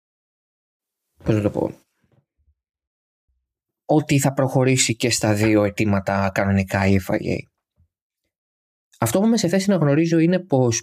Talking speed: 110 wpm